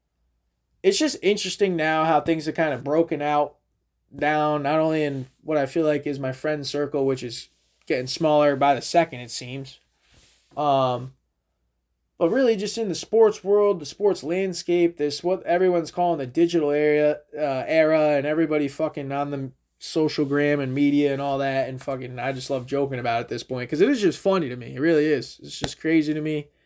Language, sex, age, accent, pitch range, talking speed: English, male, 20-39, American, 135-175 Hz, 205 wpm